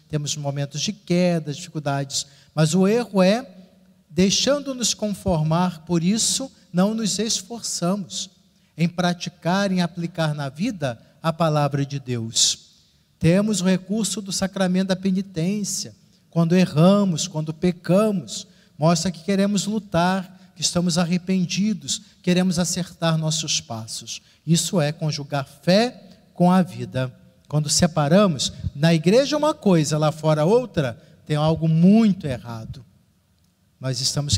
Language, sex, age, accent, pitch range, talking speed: Portuguese, male, 50-69, Brazilian, 155-195 Hz, 120 wpm